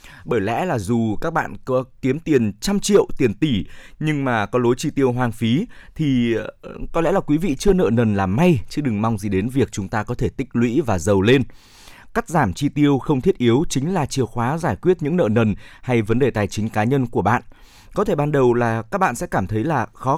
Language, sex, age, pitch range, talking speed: Vietnamese, male, 20-39, 110-150 Hz, 250 wpm